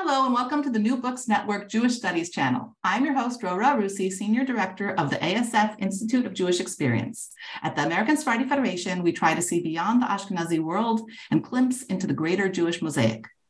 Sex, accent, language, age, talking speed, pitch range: female, American, English, 40-59, 200 wpm, 175-240 Hz